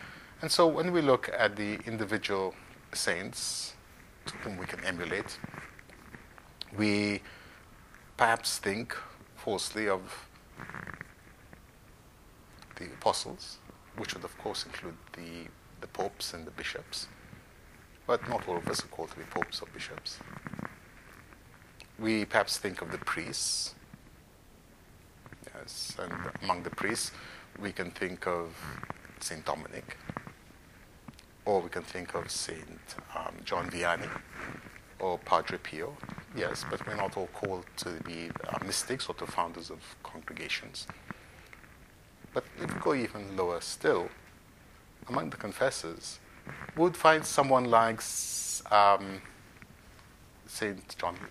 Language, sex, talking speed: English, male, 120 wpm